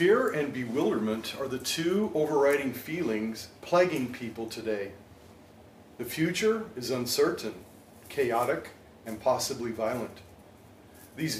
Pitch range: 110-145 Hz